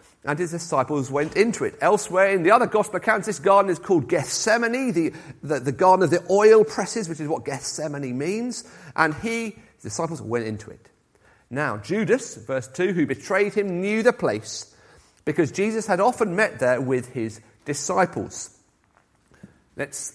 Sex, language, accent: male, English, British